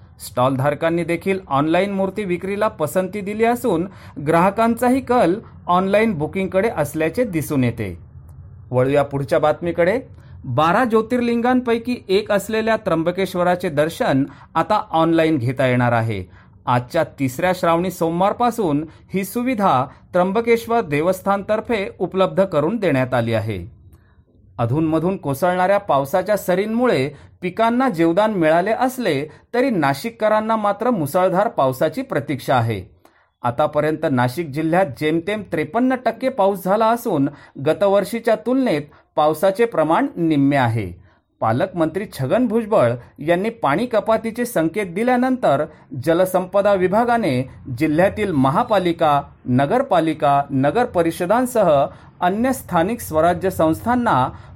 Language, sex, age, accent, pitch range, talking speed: Marathi, male, 40-59, native, 145-215 Hz, 60 wpm